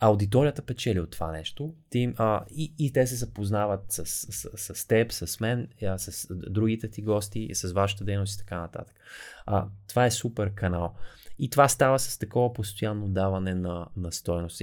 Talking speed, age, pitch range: 170 wpm, 20-39, 95-120 Hz